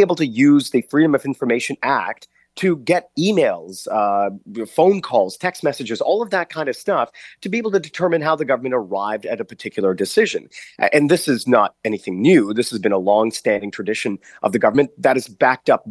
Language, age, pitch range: English, 30-49, 115-165 Hz